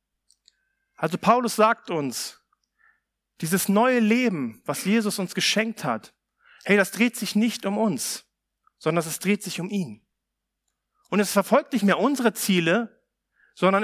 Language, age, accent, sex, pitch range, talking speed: German, 40-59, German, male, 175-230 Hz, 145 wpm